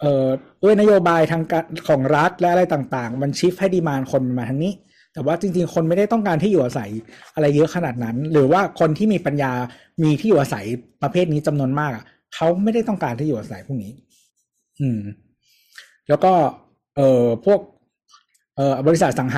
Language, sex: Thai, male